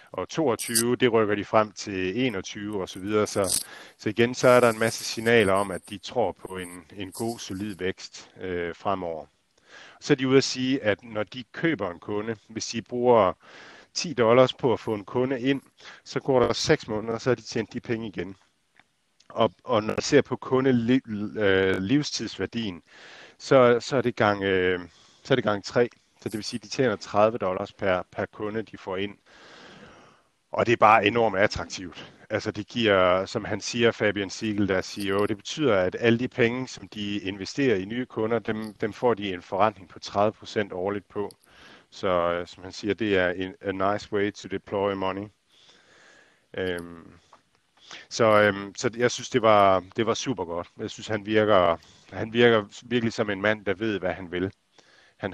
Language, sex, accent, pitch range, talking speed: Danish, male, native, 95-115 Hz, 190 wpm